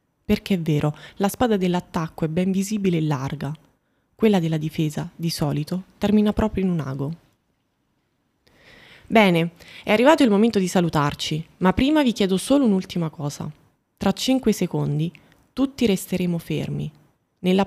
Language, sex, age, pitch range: Italian, female, 20-39, 155-205 Hz